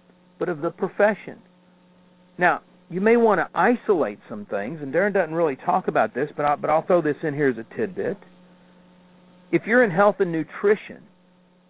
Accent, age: American, 50-69